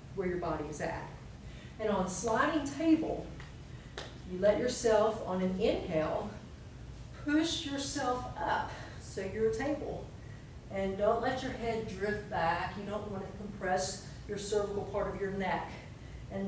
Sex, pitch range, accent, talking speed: female, 160-220 Hz, American, 150 wpm